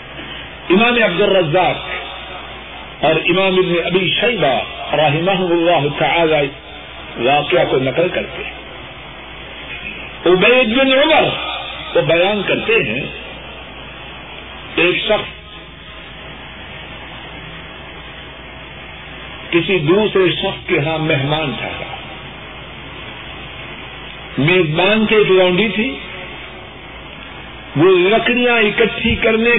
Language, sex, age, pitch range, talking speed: Urdu, male, 50-69, 180-275 Hz, 75 wpm